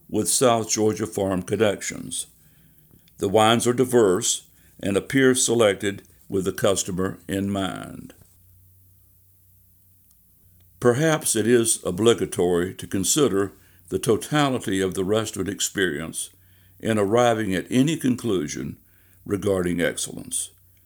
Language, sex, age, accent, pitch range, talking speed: English, male, 60-79, American, 90-115 Hz, 105 wpm